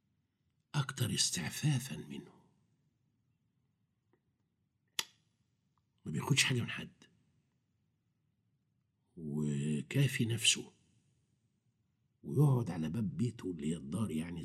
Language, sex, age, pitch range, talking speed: Arabic, male, 60-79, 85-135 Hz, 75 wpm